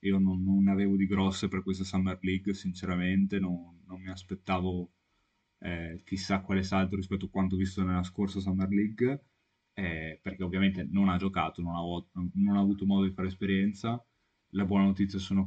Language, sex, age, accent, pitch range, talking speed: Italian, male, 10-29, native, 90-100 Hz, 180 wpm